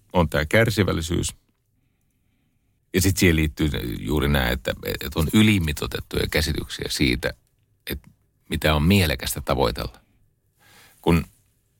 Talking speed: 105 wpm